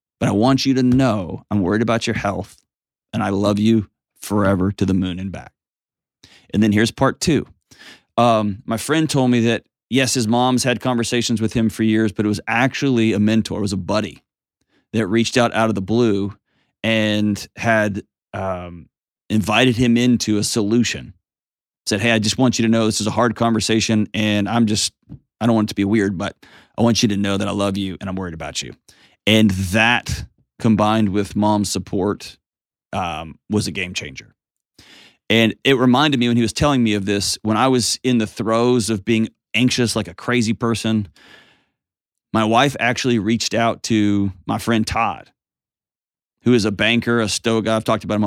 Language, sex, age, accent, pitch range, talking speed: English, male, 30-49, American, 100-115 Hz, 200 wpm